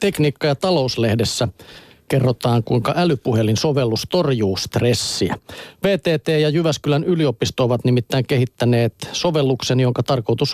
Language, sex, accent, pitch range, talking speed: Finnish, male, native, 120-150 Hz, 110 wpm